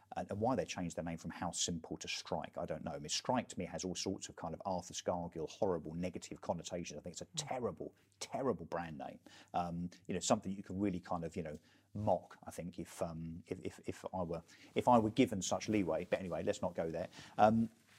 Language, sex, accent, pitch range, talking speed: English, male, British, 95-110 Hz, 235 wpm